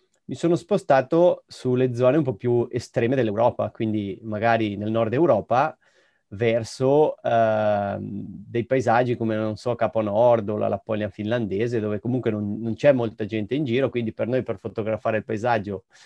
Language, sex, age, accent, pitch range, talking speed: Italian, male, 30-49, native, 105-125 Hz, 165 wpm